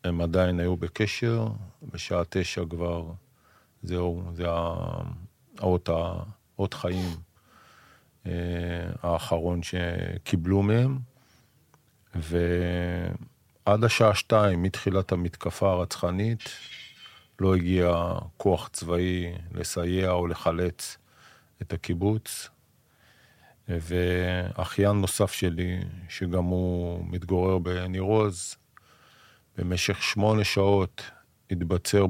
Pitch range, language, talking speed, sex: 90-105 Hz, Hebrew, 75 wpm, male